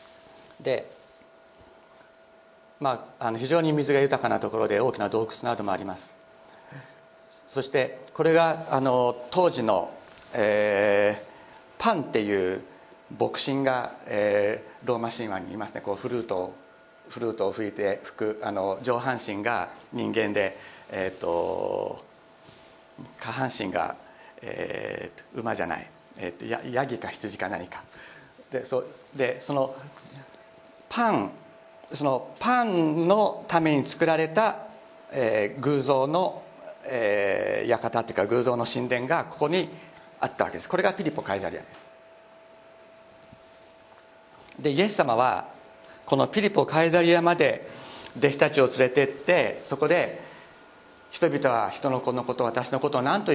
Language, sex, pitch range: Japanese, male, 120-175 Hz